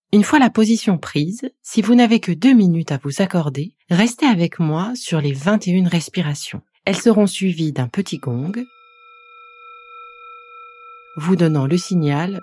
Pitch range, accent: 145-210 Hz, French